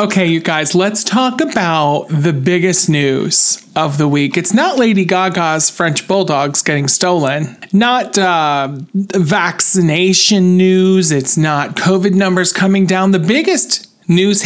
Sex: male